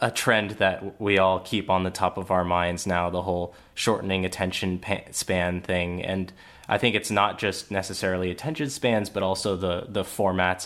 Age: 20-39